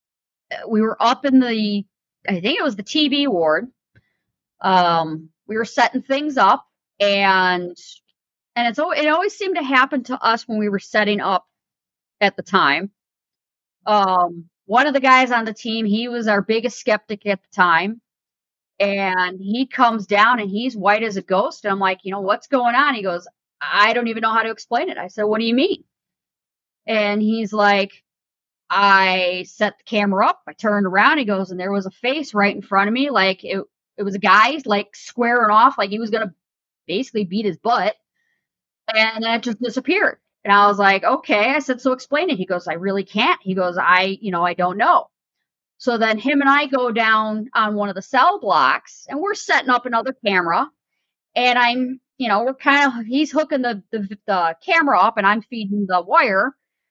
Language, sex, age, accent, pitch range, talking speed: English, female, 40-59, American, 200-255 Hz, 200 wpm